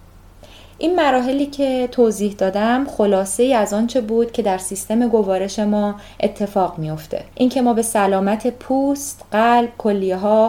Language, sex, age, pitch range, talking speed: Persian, female, 30-49, 185-230 Hz, 145 wpm